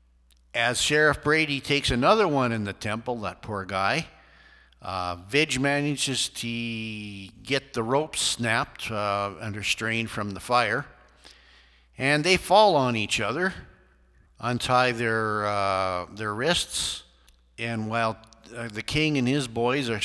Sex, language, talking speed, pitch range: male, English, 130 wpm, 105-135 Hz